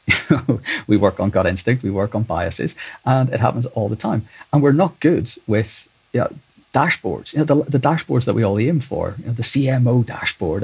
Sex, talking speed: male, 225 wpm